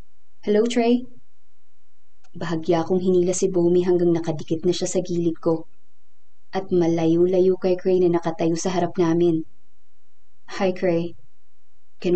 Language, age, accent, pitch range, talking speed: Filipino, 20-39, native, 165-190 Hz, 130 wpm